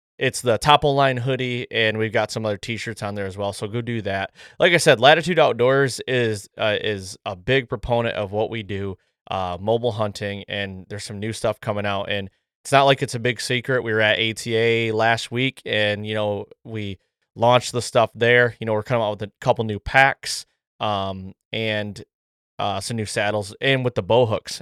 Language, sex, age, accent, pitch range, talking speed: English, male, 20-39, American, 105-125 Hz, 215 wpm